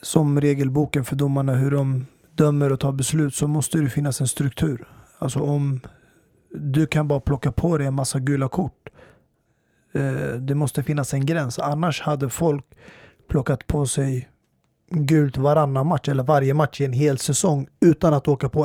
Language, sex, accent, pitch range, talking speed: Swedish, male, native, 140-155 Hz, 170 wpm